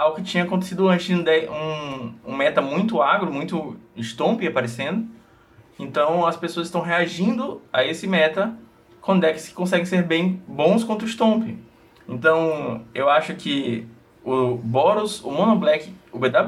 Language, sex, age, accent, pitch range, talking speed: Portuguese, male, 20-39, Brazilian, 145-180 Hz, 160 wpm